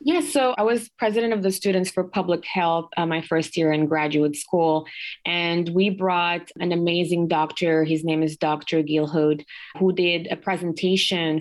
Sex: female